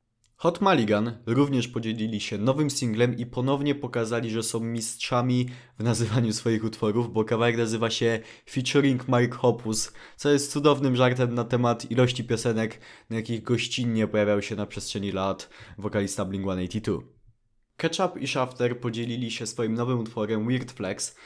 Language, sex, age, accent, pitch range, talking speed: Polish, male, 20-39, native, 110-135 Hz, 150 wpm